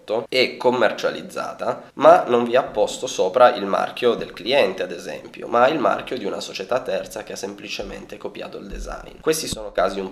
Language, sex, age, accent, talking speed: Italian, male, 20-39, native, 185 wpm